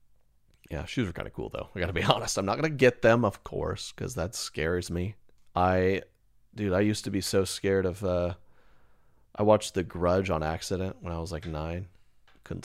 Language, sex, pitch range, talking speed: English, male, 85-115 Hz, 215 wpm